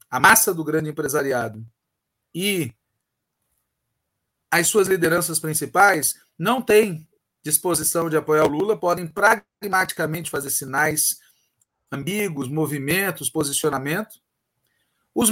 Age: 40-59